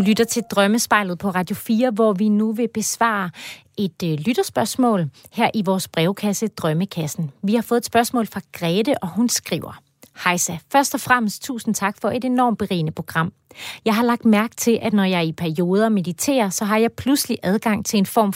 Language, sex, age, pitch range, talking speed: Danish, female, 30-49, 180-235 Hz, 190 wpm